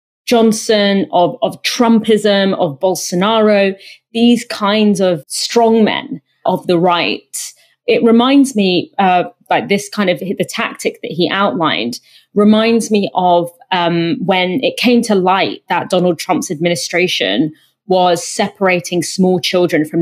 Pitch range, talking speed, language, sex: 185-235 Hz, 130 wpm, English, female